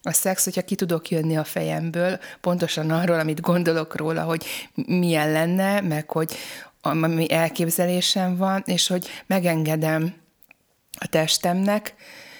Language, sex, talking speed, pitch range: Hungarian, female, 130 wpm, 155-180 Hz